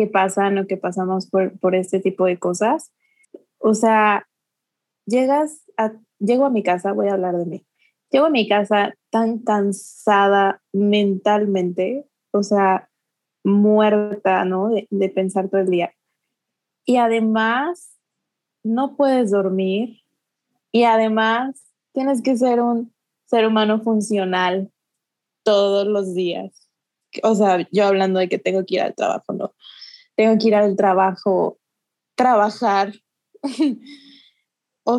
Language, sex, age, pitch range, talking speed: Spanish, female, 20-39, 195-235 Hz, 130 wpm